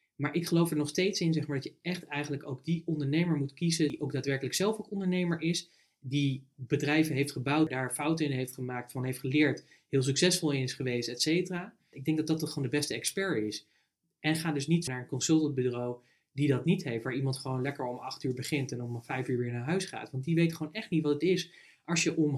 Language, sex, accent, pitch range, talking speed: Dutch, male, Dutch, 135-165 Hz, 245 wpm